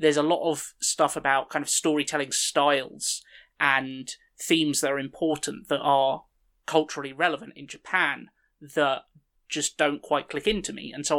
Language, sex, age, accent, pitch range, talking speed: English, male, 20-39, British, 140-165 Hz, 160 wpm